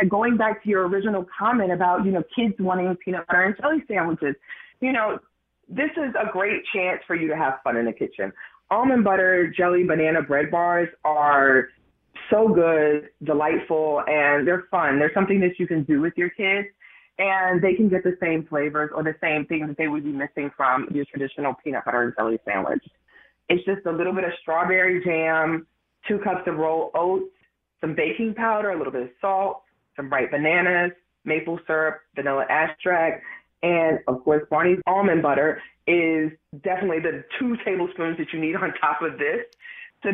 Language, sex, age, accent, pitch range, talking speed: English, female, 20-39, American, 150-195 Hz, 185 wpm